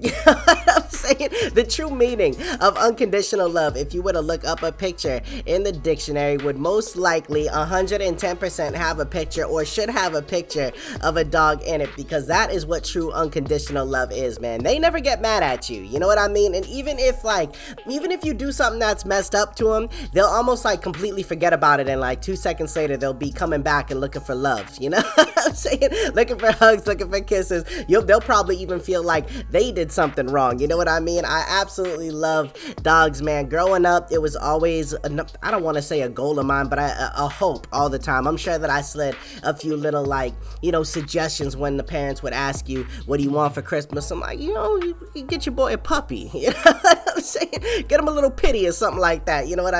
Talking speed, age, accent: 240 wpm, 20-39, American